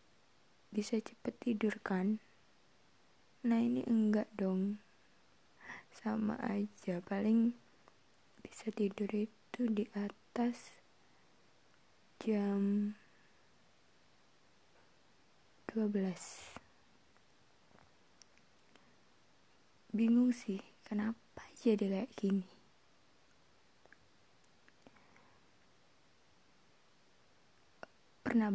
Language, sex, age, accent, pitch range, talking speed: Indonesian, female, 20-39, native, 195-225 Hz, 55 wpm